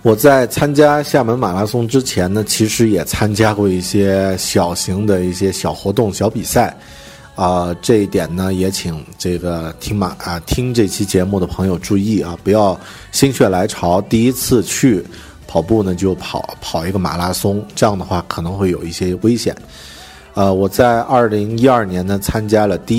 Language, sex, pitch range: Chinese, male, 90-115 Hz